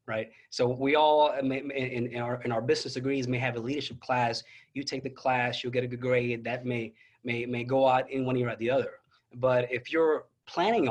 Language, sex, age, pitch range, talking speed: English, male, 20-39, 120-140 Hz, 225 wpm